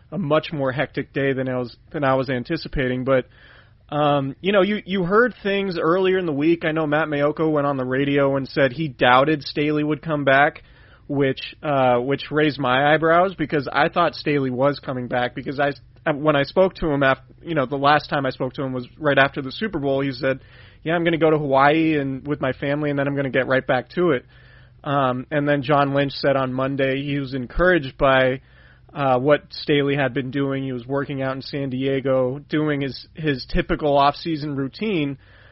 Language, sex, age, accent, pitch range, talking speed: English, male, 30-49, American, 135-155 Hz, 220 wpm